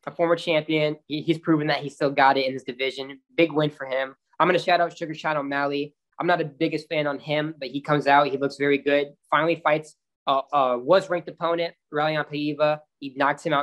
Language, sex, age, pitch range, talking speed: English, male, 10-29, 140-165 Hz, 240 wpm